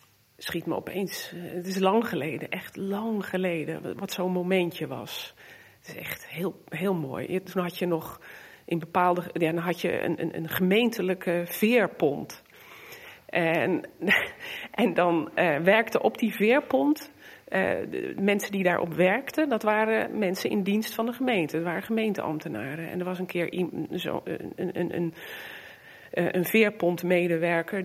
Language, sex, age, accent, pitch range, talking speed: Dutch, female, 40-59, Dutch, 170-210 Hz, 155 wpm